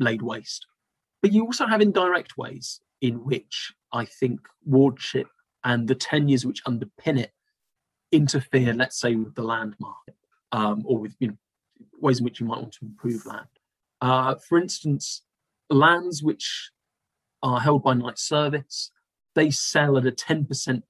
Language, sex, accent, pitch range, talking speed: English, male, British, 120-145 Hz, 160 wpm